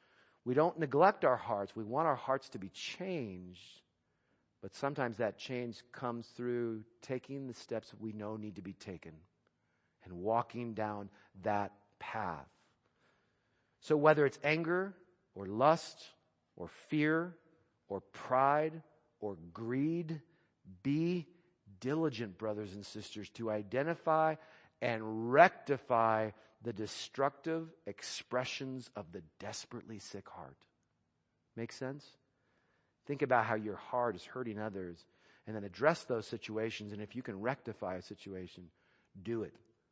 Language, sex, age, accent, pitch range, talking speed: English, male, 40-59, American, 105-155 Hz, 130 wpm